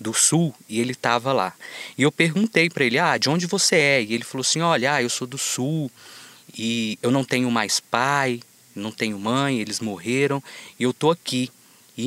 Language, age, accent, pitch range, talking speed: Portuguese, 20-39, Brazilian, 115-155 Hz, 205 wpm